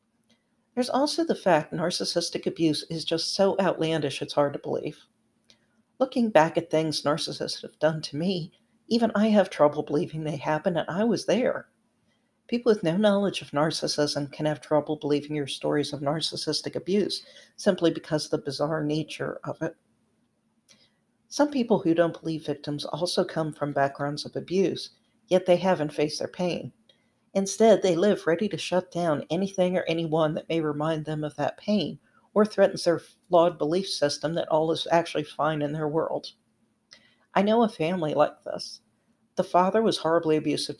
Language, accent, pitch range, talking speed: English, American, 155-195 Hz, 170 wpm